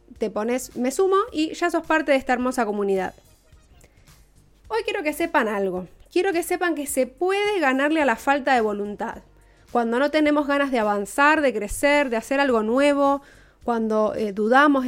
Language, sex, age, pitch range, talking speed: Spanish, female, 20-39, 230-310 Hz, 180 wpm